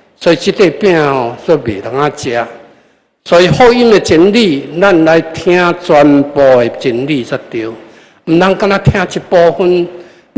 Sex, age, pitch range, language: male, 60-79, 145-205 Hz, Chinese